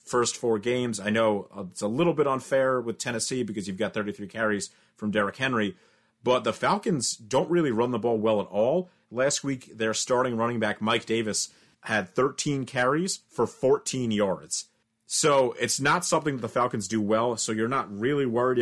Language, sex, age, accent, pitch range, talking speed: English, male, 30-49, American, 105-135 Hz, 185 wpm